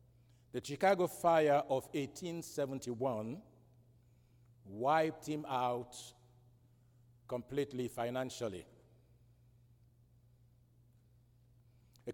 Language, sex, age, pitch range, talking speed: English, male, 60-79, 120-130 Hz, 55 wpm